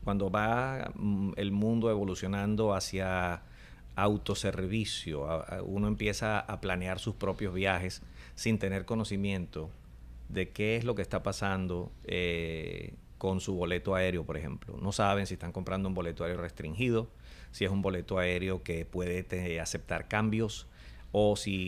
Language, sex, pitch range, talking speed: English, male, 90-105 Hz, 140 wpm